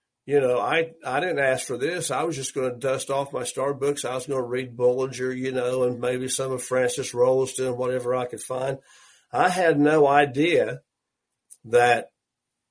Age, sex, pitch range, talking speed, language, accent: 50-69, male, 125-150 Hz, 195 wpm, English, American